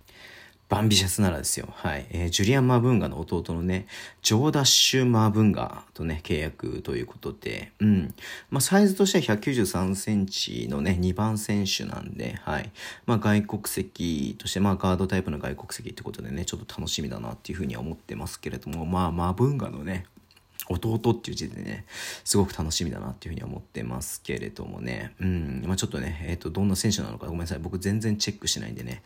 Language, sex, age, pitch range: Japanese, male, 40-59, 85-110 Hz